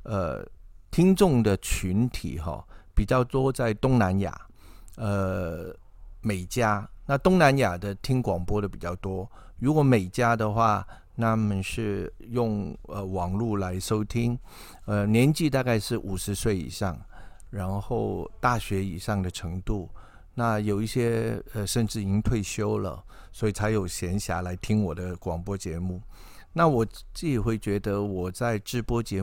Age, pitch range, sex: 50-69, 95-120 Hz, male